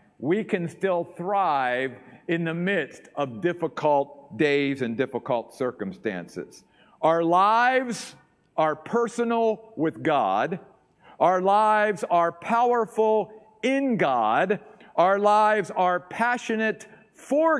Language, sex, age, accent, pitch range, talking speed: English, male, 50-69, American, 150-210 Hz, 100 wpm